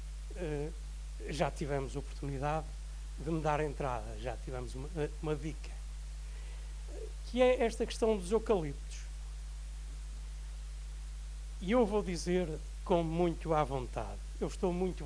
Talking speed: 120 wpm